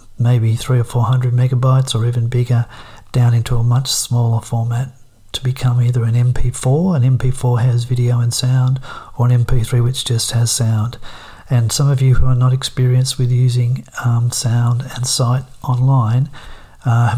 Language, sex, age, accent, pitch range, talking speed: English, male, 40-59, Australian, 120-130 Hz, 170 wpm